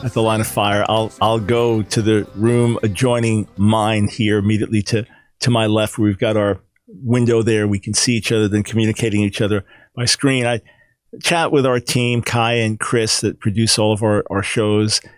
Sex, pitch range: male, 110-140 Hz